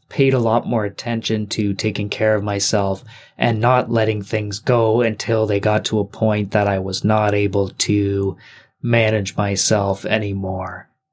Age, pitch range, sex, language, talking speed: 20-39, 110-140 Hz, male, English, 160 wpm